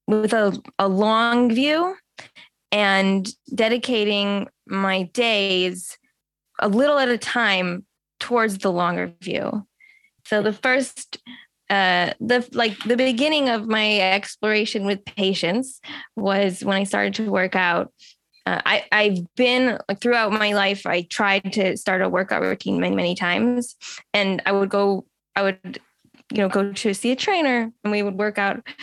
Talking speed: 155 wpm